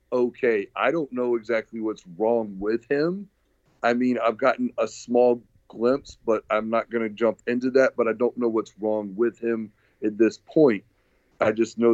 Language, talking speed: English, 190 wpm